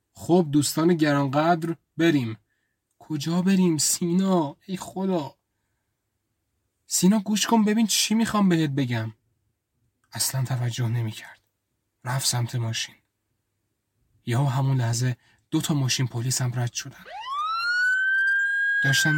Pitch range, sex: 115-155 Hz, male